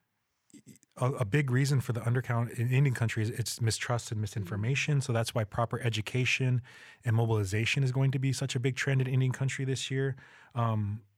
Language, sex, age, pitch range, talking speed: English, male, 20-39, 110-125 Hz, 190 wpm